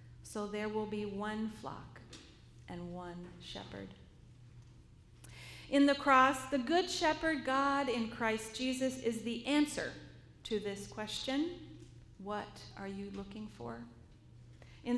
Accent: American